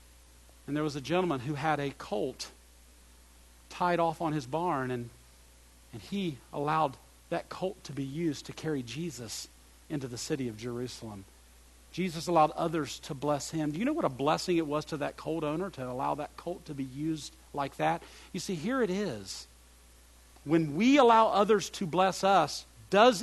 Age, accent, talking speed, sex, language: 50-69, American, 185 wpm, male, English